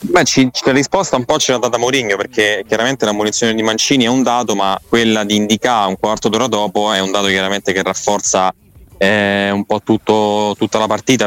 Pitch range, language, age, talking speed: 100-120 Hz, Italian, 20-39, 195 wpm